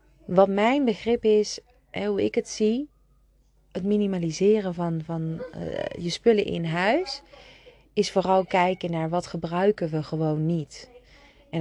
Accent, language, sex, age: Dutch, Dutch, female, 30-49